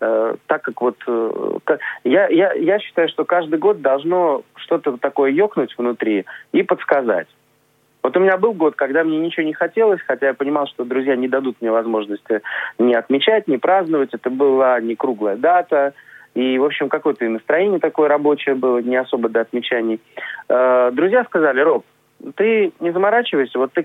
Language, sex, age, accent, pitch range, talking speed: Russian, male, 30-49, native, 125-160 Hz, 165 wpm